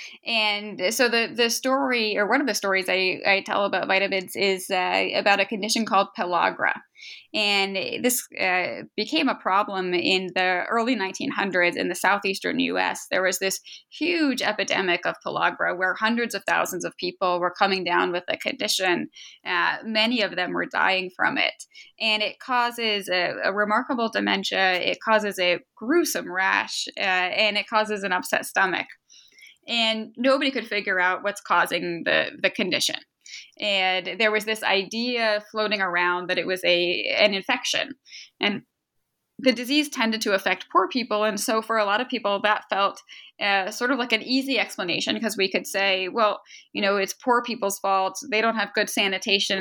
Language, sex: English, female